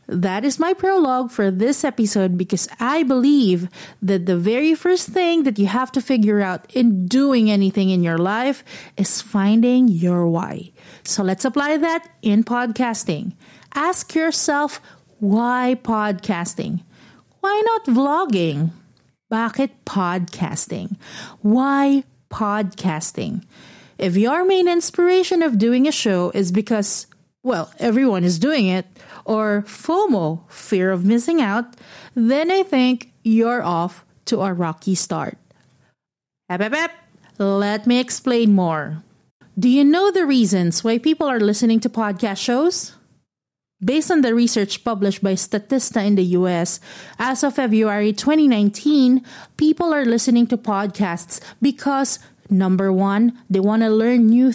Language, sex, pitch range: English, female, 195-270 Hz